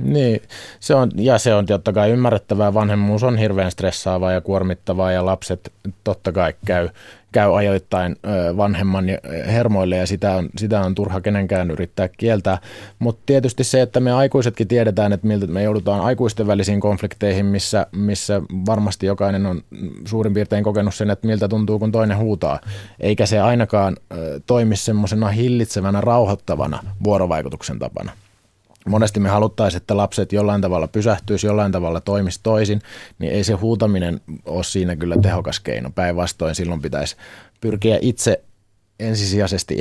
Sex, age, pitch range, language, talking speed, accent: male, 20-39, 95-110 Hz, Finnish, 150 wpm, native